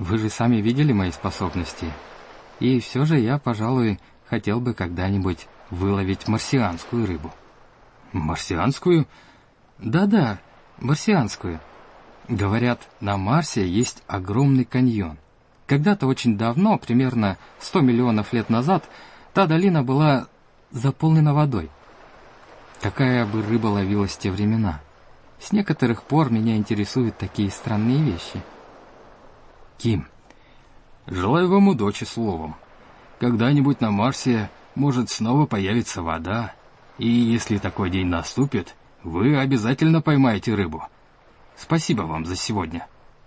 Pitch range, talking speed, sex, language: 95-130 Hz, 110 wpm, male, Russian